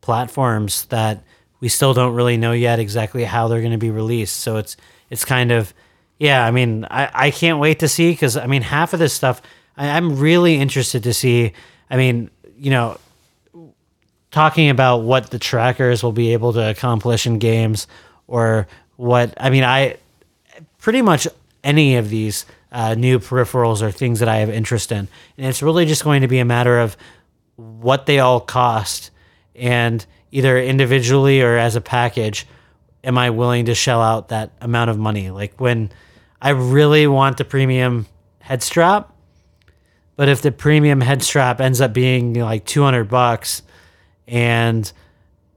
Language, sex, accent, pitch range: English, male, American, 110-130 Hz